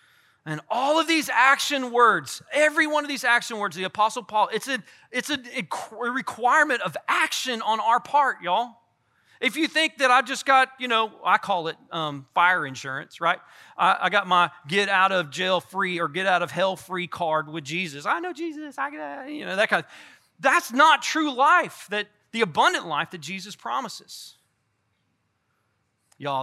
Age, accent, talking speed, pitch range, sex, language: 30-49, American, 175 wpm, 145-235 Hz, male, English